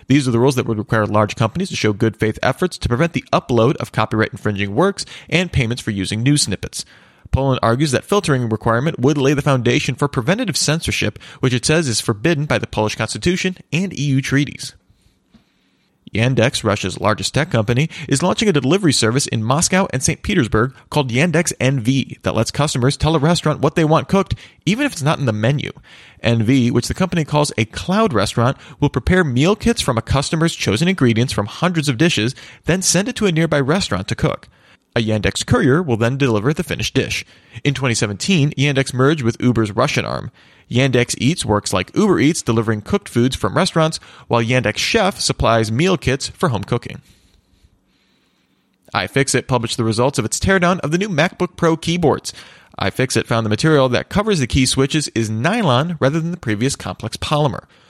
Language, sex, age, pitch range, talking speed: English, male, 30-49, 115-160 Hz, 190 wpm